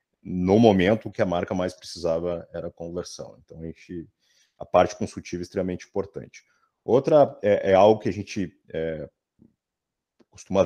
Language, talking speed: Portuguese, 140 wpm